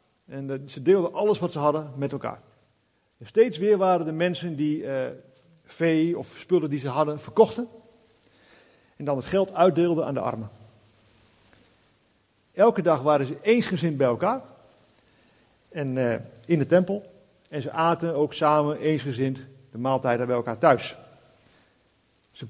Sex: male